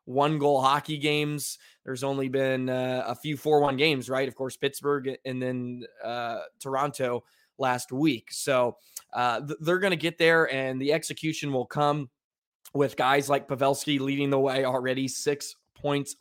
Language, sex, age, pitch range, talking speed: English, male, 20-39, 130-145 Hz, 165 wpm